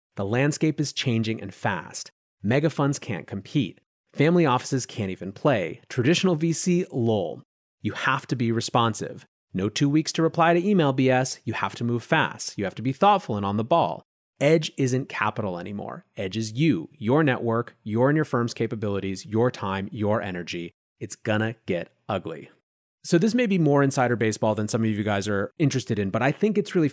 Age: 30-49